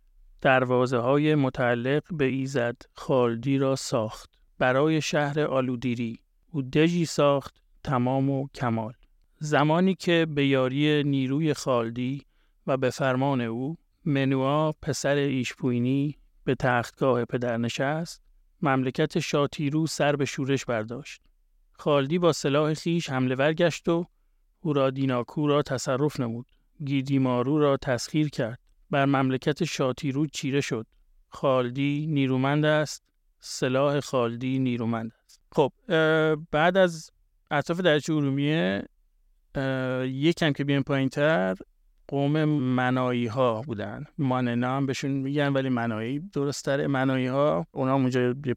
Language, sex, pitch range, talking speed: Persian, male, 125-150 Hz, 120 wpm